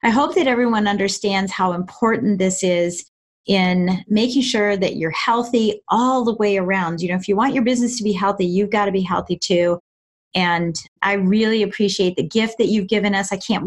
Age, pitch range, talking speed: 30-49, 190-235 Hz, 205 wpm